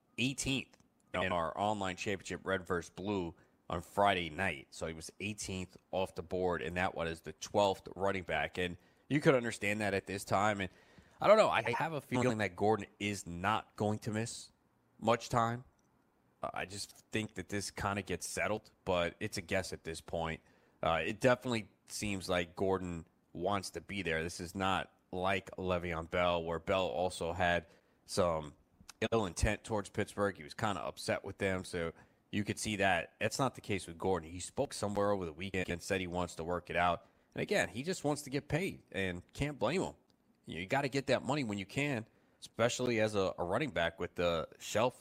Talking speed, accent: 205 wpm, American